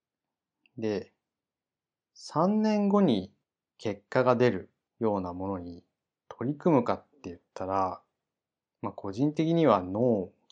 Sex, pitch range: male, 95-130 Hz